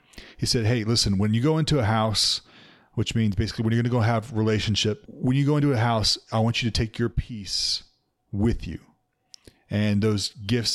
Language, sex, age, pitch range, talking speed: English, male, 30-49, 100-120 Hz, 210 wpm